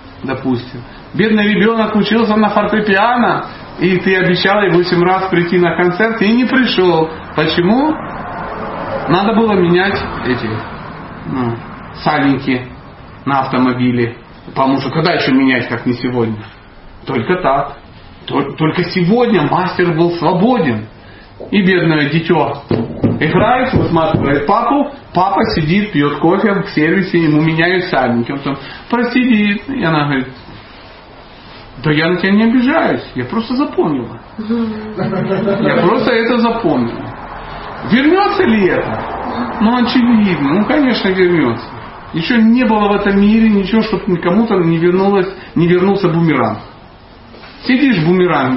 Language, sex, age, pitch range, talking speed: Russian, male, 40-59, 130-210 Hz, 120 wpm